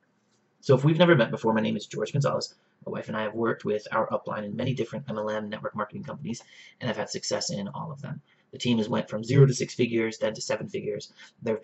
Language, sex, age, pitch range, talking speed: English, male, 30-49, 115-145 Hz, 260 wpm